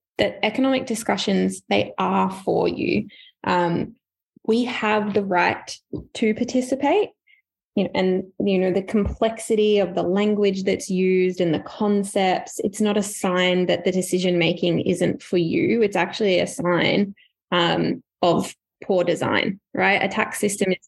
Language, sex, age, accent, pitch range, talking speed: English, female, 10-29, Australian, 185-215 Hz, 150 wpm